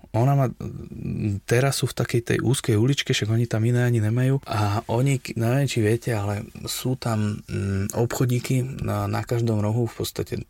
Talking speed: 170 wpm